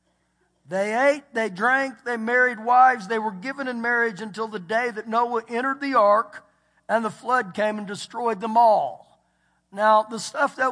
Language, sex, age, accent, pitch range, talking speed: English, male, 50-69, American, 215-265 Hz, 180 wpm